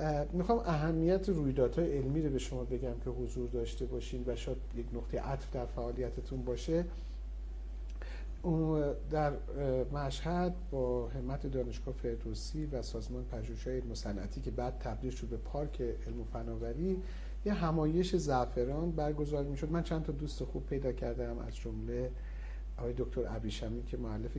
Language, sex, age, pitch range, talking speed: English, male, 50-69, 115-150 Hz, 145 wpm